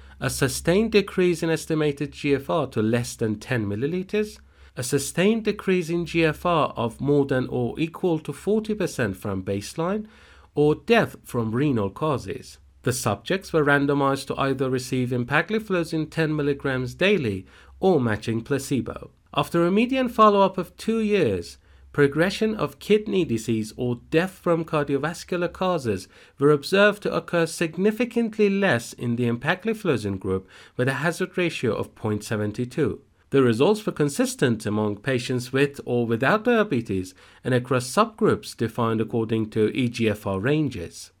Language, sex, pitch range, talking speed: Persian, male, 115-180 Hz, 140 wpm